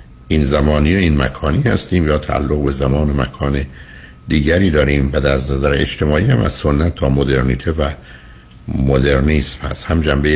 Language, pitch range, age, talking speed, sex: Persian, 65-80 Hz, 60-79, 155 wpm, male